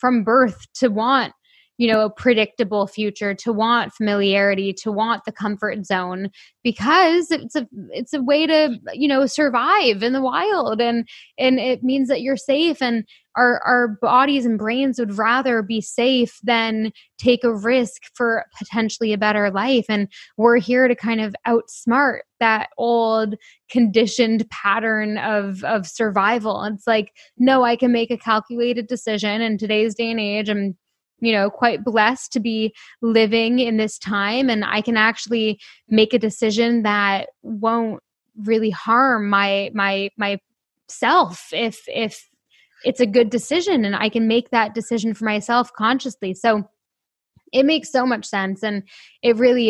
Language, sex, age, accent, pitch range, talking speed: English, female, 10-29, American, 210-245 Hz, 160 wpm